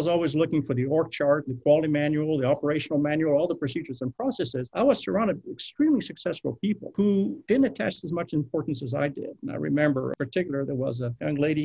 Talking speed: 220 wpm